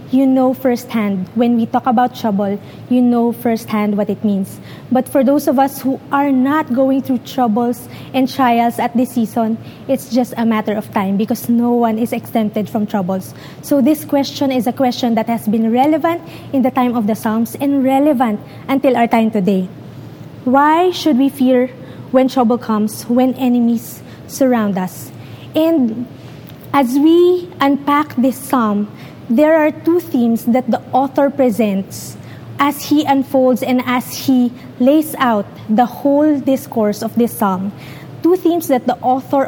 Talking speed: 165 wpm